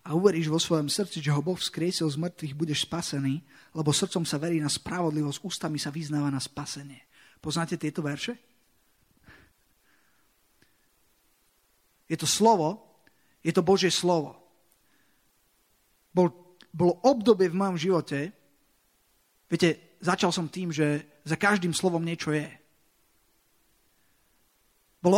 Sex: male